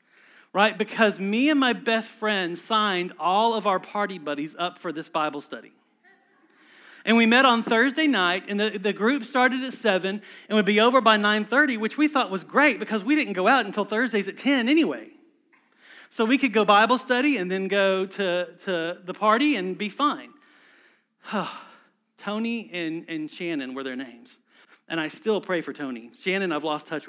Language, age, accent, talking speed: English, 40-59, American, 190 wpm